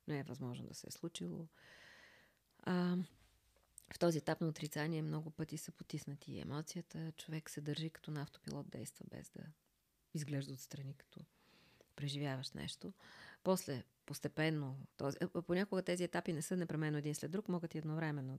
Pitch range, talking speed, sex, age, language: 150-185 Hz, 155 wpm, female, 40-59, Bulgarian